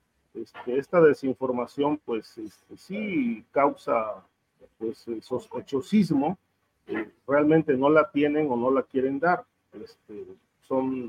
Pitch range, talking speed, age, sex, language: 120-160 Hz, 115 wpm, 40-59, male, Spanish